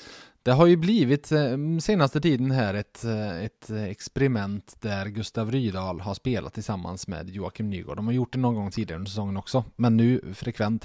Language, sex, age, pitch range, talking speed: Swedish, male, 20-39, 100-130 Hz, 175 wpm